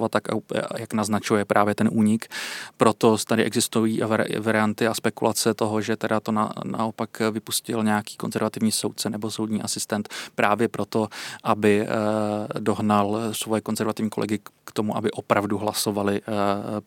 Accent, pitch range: native, 105-110 Hz